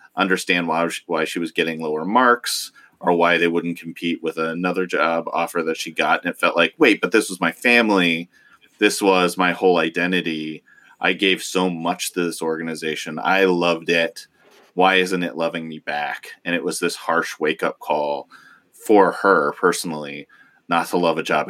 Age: 30-49